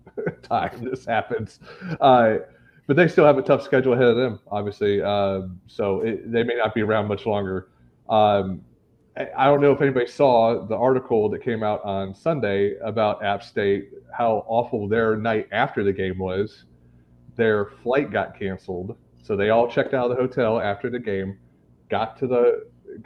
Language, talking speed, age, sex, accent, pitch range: English, 180 wpm, 30-49, male, American, 95-120 Hz